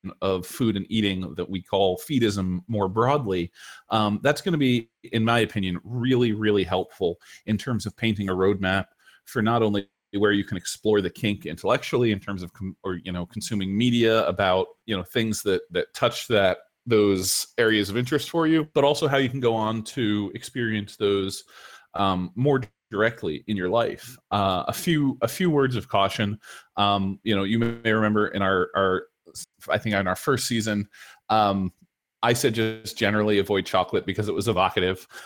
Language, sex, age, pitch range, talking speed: English, male, 30-49, 95-115 Hz, 185 wpm